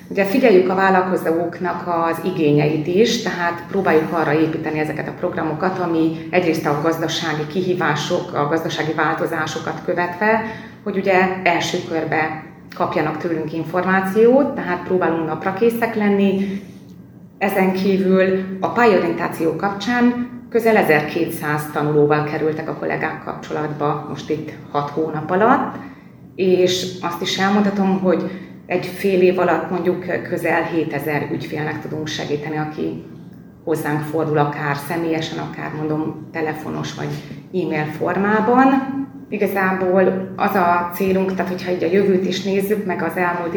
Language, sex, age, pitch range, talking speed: Hungarian, female, 30-49, 155-190 Hz, 125 wpm